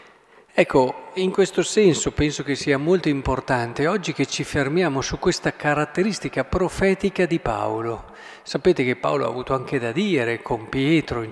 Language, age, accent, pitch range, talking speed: Italian, 40-59, native, 130-165 Hz, 160 wpm